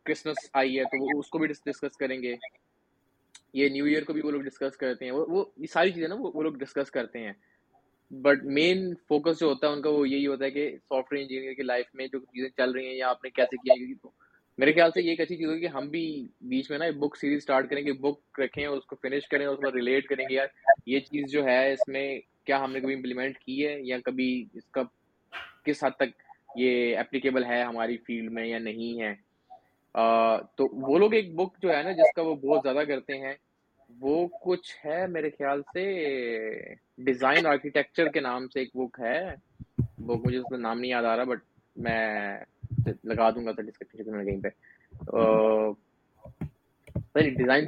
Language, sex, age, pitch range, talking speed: Urdu, male, 20-39, 125-155 Hz, 160 wpm